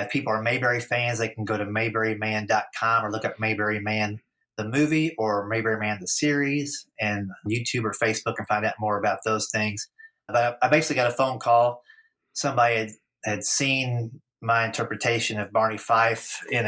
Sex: male